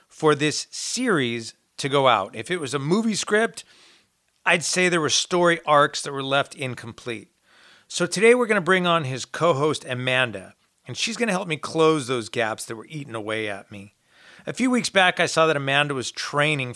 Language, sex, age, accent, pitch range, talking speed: English, male, 40-59, American, 125-170 Hz, 205 wpm